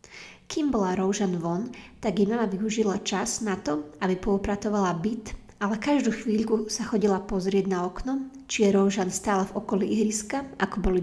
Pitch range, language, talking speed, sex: 195-225 Hz, Slovak, 170 wpm, female